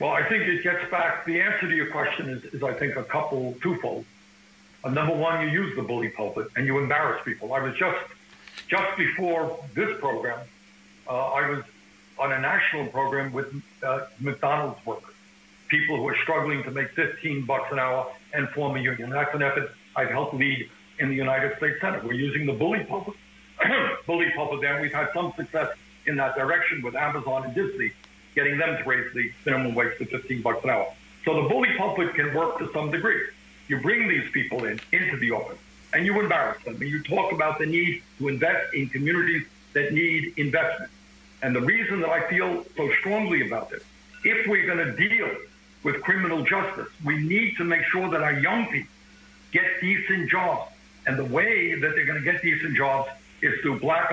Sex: male